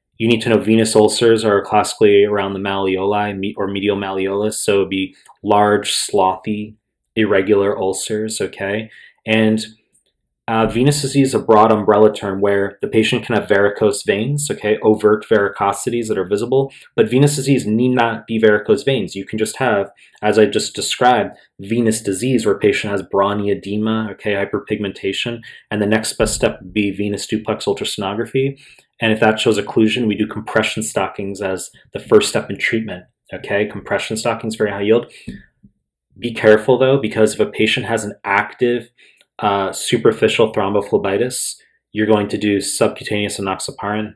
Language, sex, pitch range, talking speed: English, male, 100-115 Hz, 165 wpm